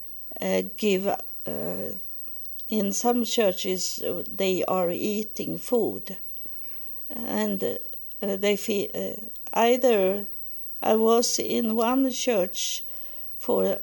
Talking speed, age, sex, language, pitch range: 95 wpm, 60-79, female, English, 190-230 Hz